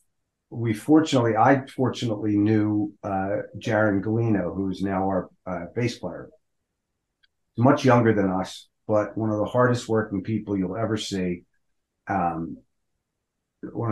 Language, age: English, 50-69